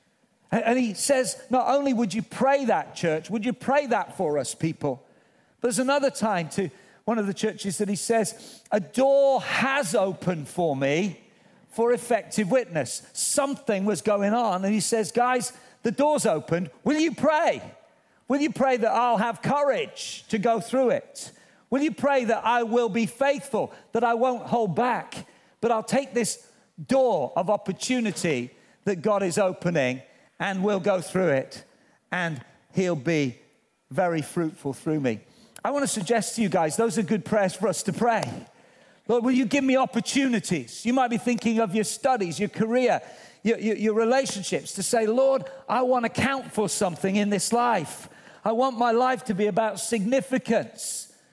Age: 50-69